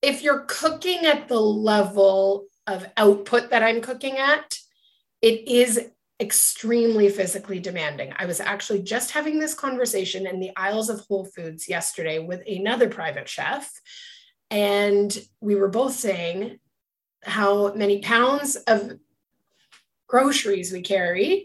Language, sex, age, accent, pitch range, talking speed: English, female, 30-49, American, 200-255 Hz, 130 wpm